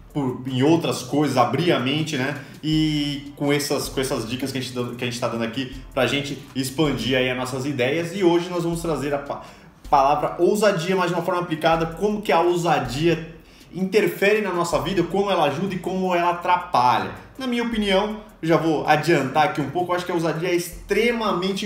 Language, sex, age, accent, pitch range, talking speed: Portuguese, male, 20-39, Brazilian, 140-175 Hz, 200 wpm